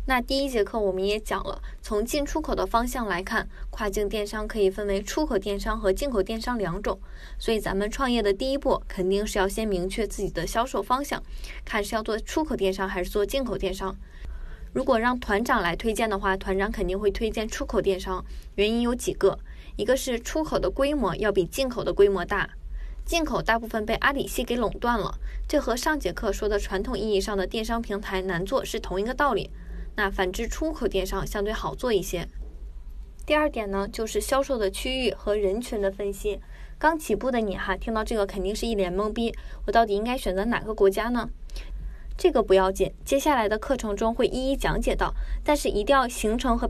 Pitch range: 195-245 Hz